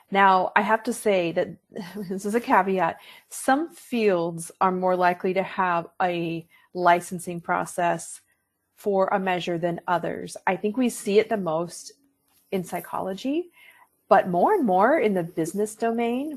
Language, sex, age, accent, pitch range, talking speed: English, female, 30-49, American, 170-220 Hz, 155 wpm